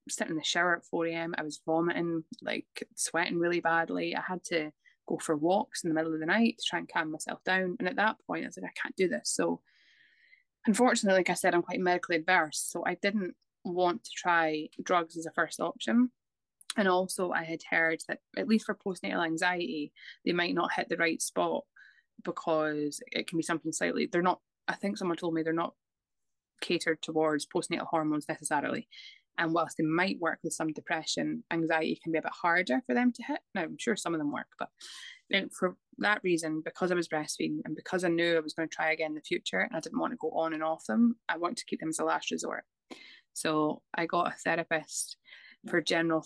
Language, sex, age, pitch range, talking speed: English, female, 20-39, 160-185 Hz, 225 wpm